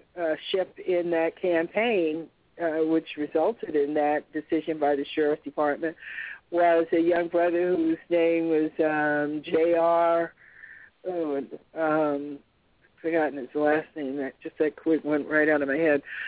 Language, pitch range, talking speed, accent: English, 160-200 Hz, 130 wpm, American